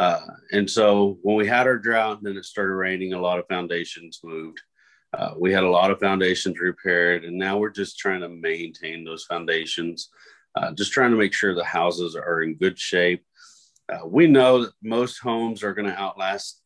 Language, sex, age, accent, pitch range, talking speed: English, male, 40-59, American, 90-110 Hz, 205 wpm